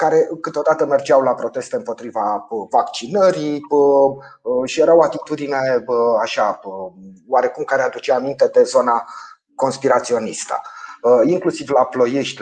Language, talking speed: Romanian, 105 wpm